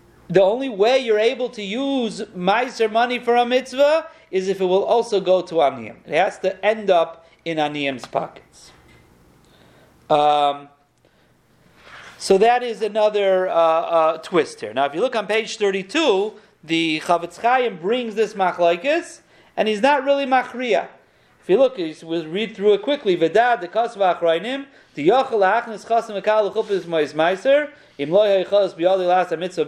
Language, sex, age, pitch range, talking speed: English, male, 40-59, 170-245 Hz, 165 wpm